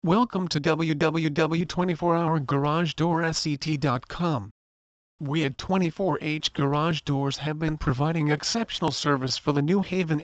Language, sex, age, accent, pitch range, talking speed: English, male, 40-59, American, 140-170 Hz, 100 wpm